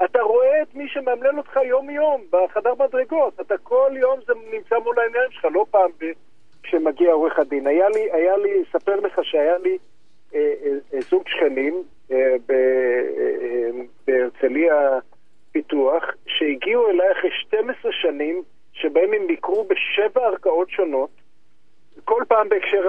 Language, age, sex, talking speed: Hebrew, 50-69, male, 145 wpm